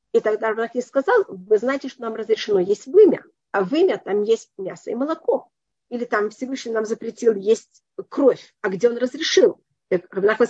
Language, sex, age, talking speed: Russian, female, 40-59, 175 wpm